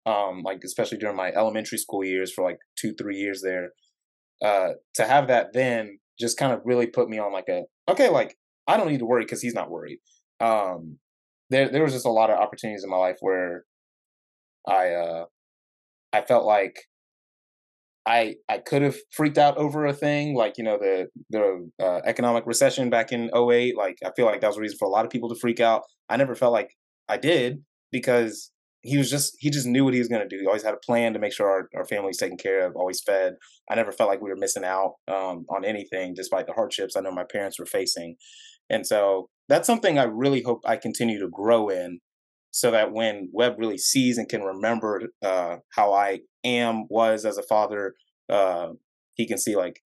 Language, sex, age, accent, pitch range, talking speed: English, male, 20-39, American, 95-130 Hz, 220 wpm